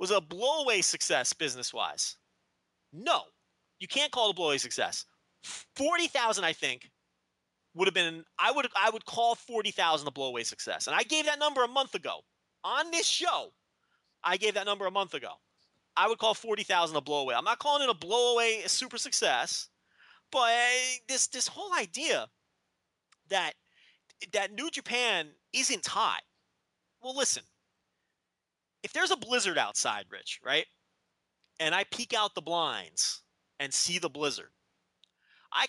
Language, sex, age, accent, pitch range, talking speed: English, male, 30-49, American, 160-245 Hz, 160 wpm